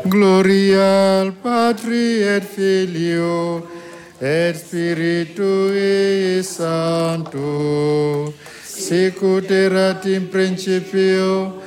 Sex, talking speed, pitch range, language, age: male, 55 wpm, 165-190 Hz, French, 50-69